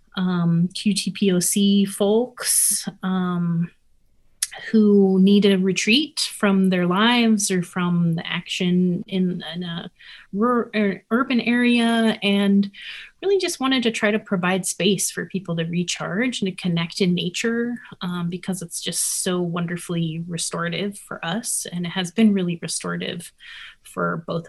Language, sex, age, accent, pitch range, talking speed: English, female, 30-49, American, 175-205 Hz, 135 wpm